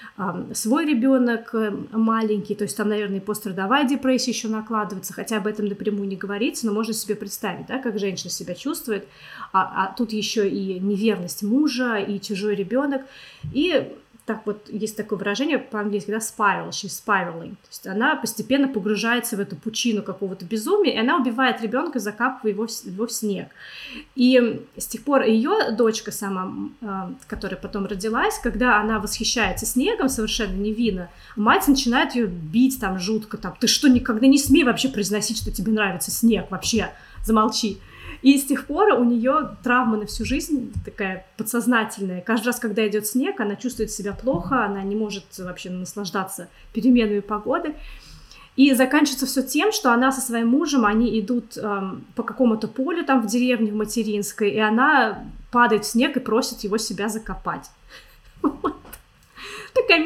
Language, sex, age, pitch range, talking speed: Russian, female, 30-49, 210-255 Hz, 160 wpm